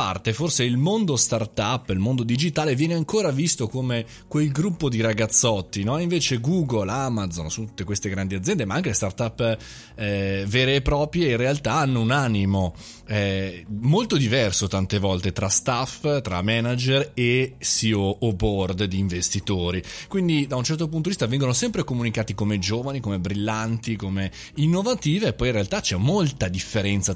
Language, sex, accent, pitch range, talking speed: Italian, male, native, 100-135 Hz, 165 wpm